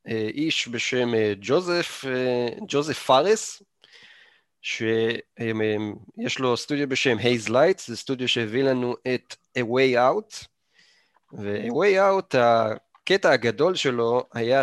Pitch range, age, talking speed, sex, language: 115-155 Hz, 30-49, 110 wpm, male, Hebrew